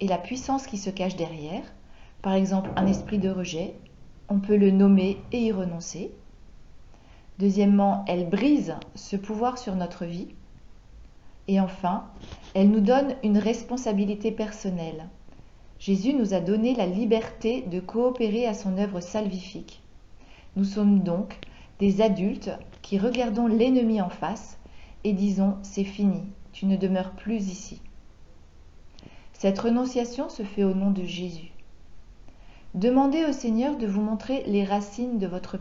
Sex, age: female, 40-59